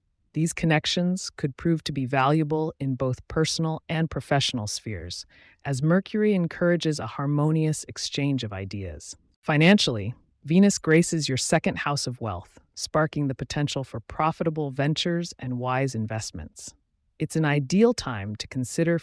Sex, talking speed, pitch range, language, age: female, 140 wpm, 115-160 Hz, English, 30-49